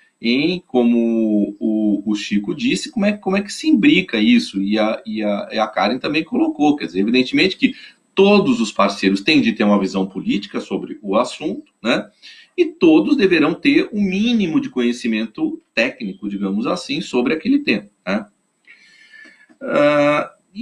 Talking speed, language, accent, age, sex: 165 wpm, Portuguese, Brazilian, 40-59, male